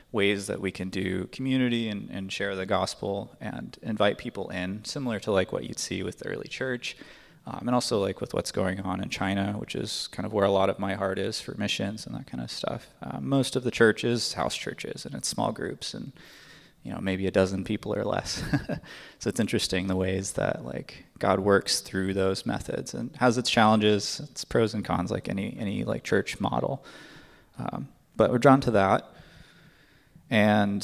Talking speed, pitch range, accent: 205 wpm, 95-115 Hz, American